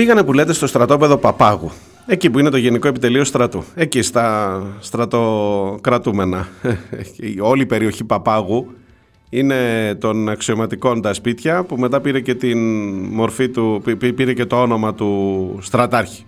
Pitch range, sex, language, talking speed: 100-130 Hz, male, Greek, 140 wpm